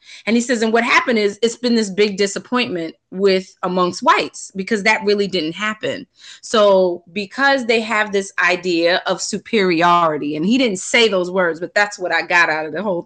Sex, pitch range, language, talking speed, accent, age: female, 185-235 Hz, English, 200 wpm, American, 30-49